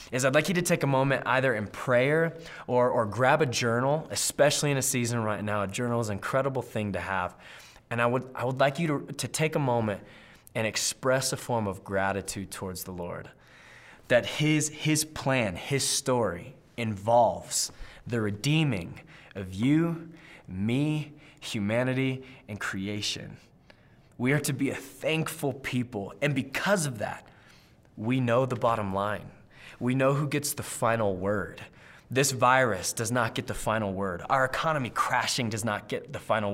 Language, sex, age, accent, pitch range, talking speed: English, male, 20-39, American, 110-145 Hz, 170 wpm